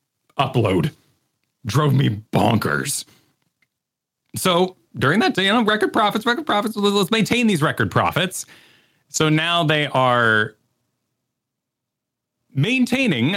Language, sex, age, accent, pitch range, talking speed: English, male, 30-49, American, 115-160 Hz, 110 wpm